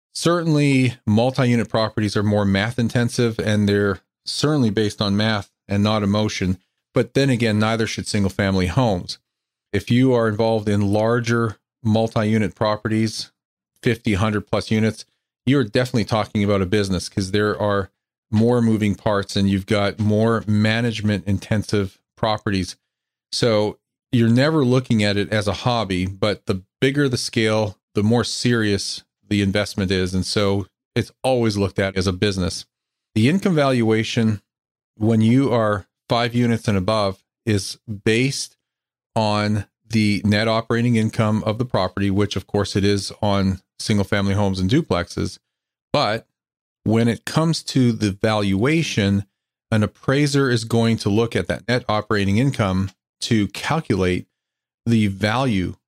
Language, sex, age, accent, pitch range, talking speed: English, male, 40-59, American, 100-115 Hz, 145 wpm